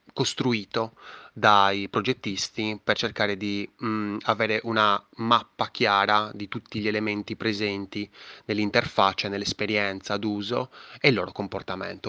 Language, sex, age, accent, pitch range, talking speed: Italian, male, 20-39, native, 105-130 Hz, 110 wpm